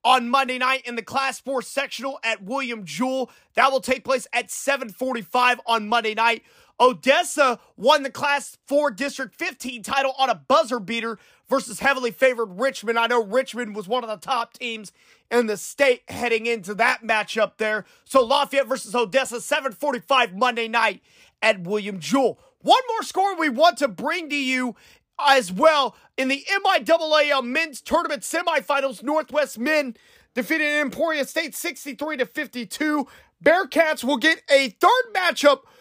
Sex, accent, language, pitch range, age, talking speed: male, American, English, 240-300 Hz, 30-49, 160 wpm